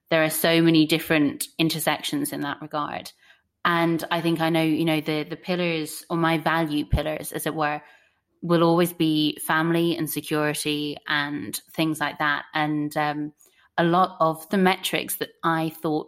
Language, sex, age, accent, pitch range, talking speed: English, female, 20-39, British, 155-170 Hz, 170 wpm